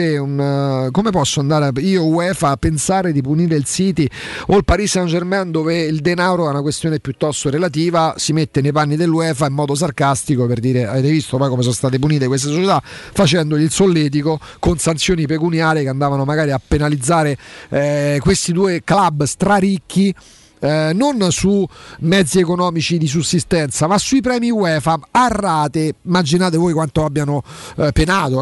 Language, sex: Italian, male